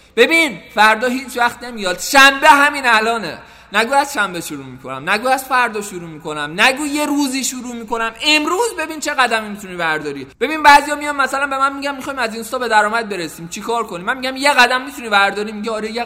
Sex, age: male, 20-39